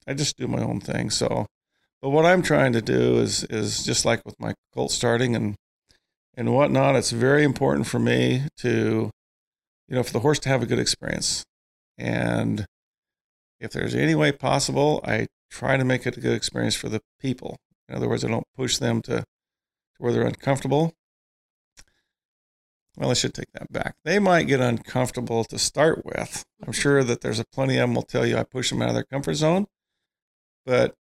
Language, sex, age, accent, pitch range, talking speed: English, male, 40-59, American, 115-150 Hz, 195 wpm